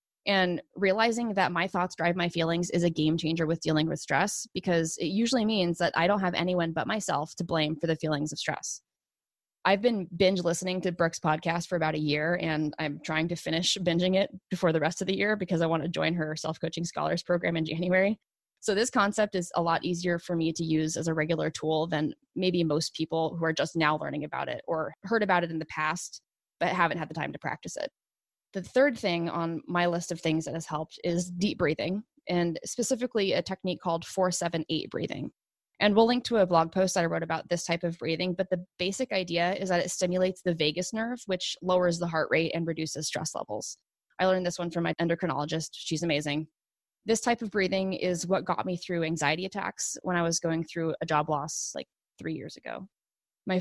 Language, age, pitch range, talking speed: English, 20-39, 160-185 Hz, 225 wpm